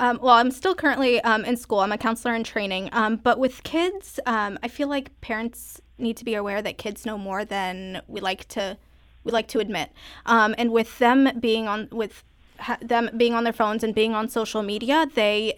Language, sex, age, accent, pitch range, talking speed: English, female, 20-39, American, 210-245 Hz, 220 wpm